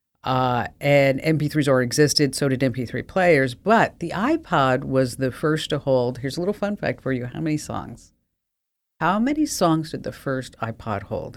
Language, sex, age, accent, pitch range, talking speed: English, female, 50-69, American, 125-155 Hz, 185 wpm